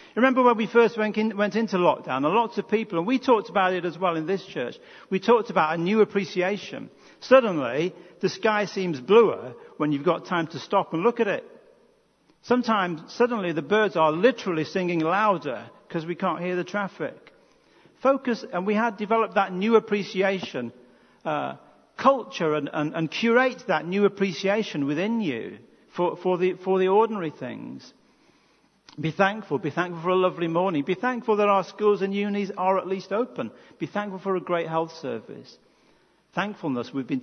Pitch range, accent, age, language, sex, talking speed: 170-225 Hz, British, 50-69, English, male, 180 wpm